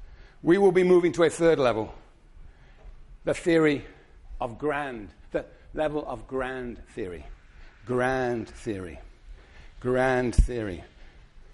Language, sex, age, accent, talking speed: English, male, 50-69, British, 110 wpm